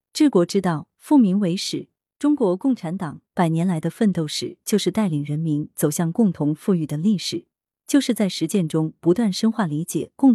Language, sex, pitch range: Chinese, female, 160-225 Hz